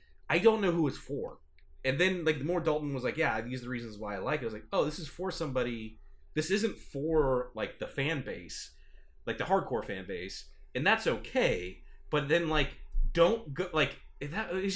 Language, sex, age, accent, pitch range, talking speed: English, male, 30-49, American, 110-170 Hz, 220 wpm